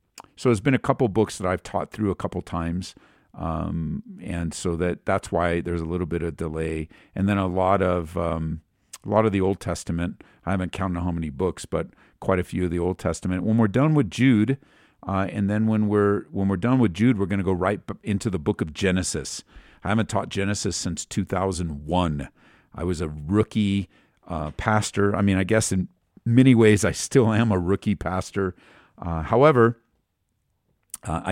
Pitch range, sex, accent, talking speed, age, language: 90-110 Hz, male, American, 200 wpm, 50-69, English